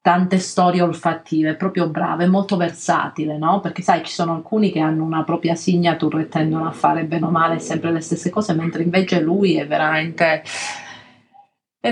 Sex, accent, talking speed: female, native, 180 wpm